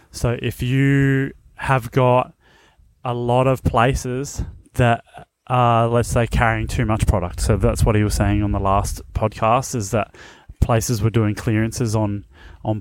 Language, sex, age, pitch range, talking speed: English, male, 30-49, 105-125 Hz, 165 wpm